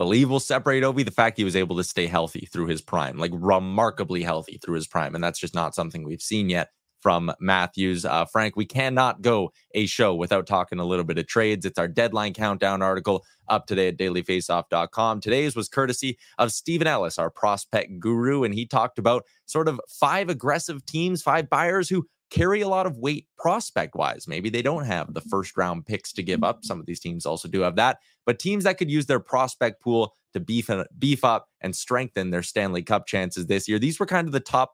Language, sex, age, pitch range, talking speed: English, male, 20-39, 95-140 Hz, 220 wpm